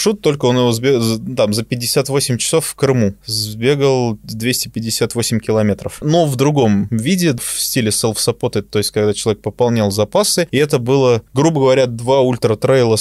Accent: native